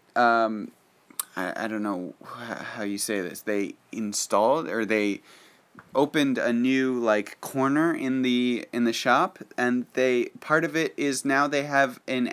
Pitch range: 110-140 Hz